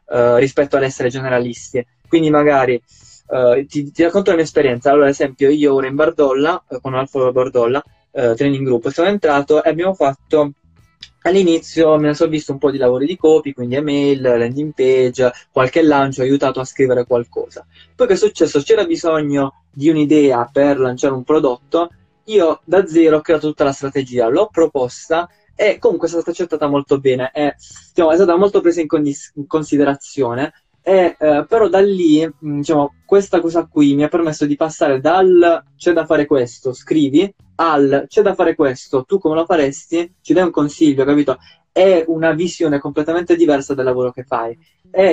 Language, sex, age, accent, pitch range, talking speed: Italian, male, 20-39, native, 135-165 Hz, 180 wpm